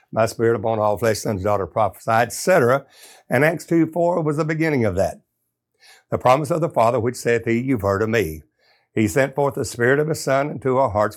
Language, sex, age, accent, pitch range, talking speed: English, male, 60-79, American, 115-140 Hz, 225 wpm